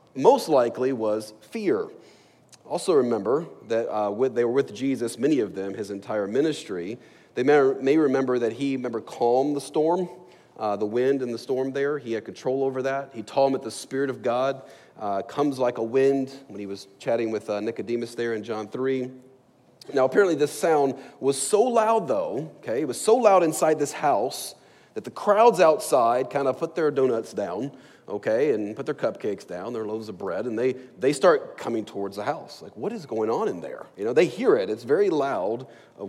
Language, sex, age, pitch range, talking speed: English, male, 40-59, 115-145 Hz, 210 wpm